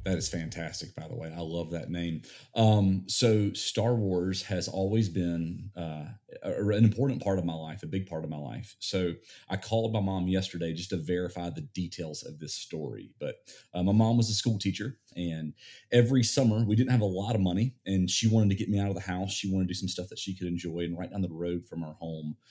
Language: English